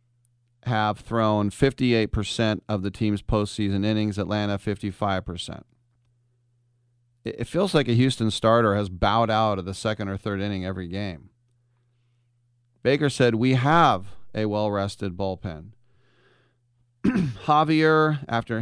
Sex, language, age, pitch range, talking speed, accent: male, English, 40-59, 105-120 Hz, 115 wpm, American